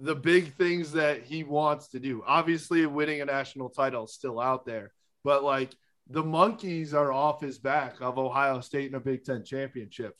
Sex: male